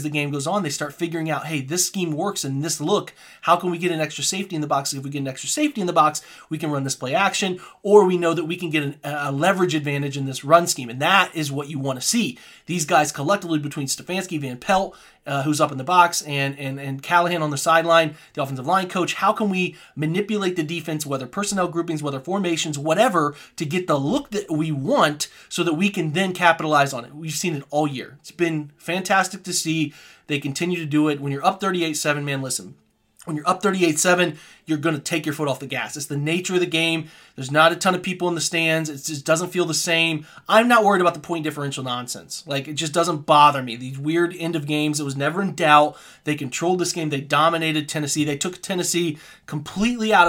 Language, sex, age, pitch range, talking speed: English, male, 30-49, 145-175 Hz, 245 wpm